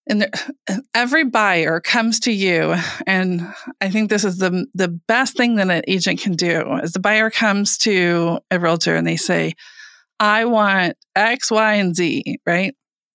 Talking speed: 170 wpm